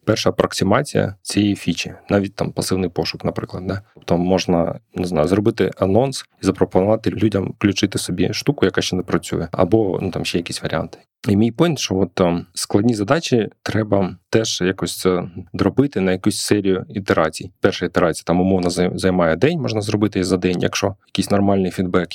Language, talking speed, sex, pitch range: Ukrainian, 170 wpm, male, 90-105 Hz